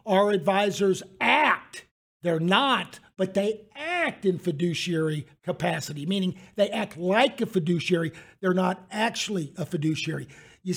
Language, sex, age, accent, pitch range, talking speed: English, male, 50-69, American, 170-215 Hz, 130 wpm